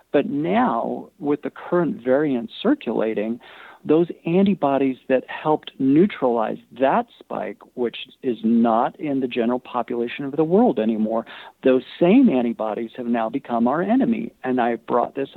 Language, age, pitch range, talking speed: English, 50-69, 125-170 Hz, 145 wpm